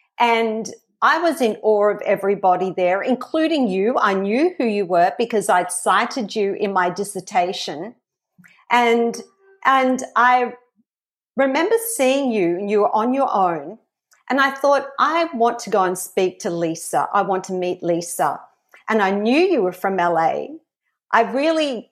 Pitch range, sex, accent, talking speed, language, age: 200-255 Hz, female, Australian, 160 wpm, English, 50-69